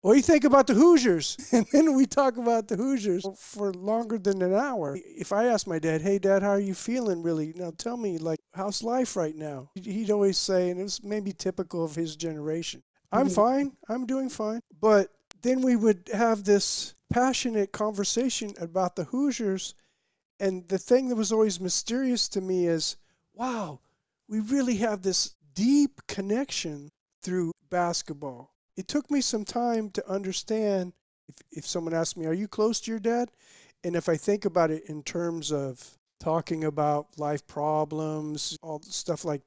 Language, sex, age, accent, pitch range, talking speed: English, male, 50-69, American, 165-225 Hz, 180 wpm